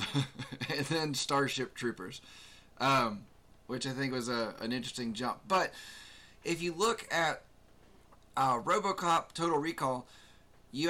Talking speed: 125 wpm